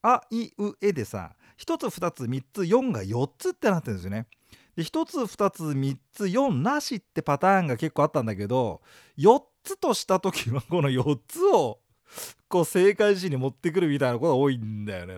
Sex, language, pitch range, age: male, Japanese, 135-225 Hz, 40-59